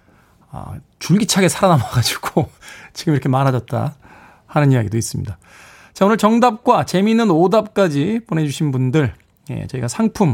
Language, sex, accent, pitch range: Korean, male, native, 120-195 Hz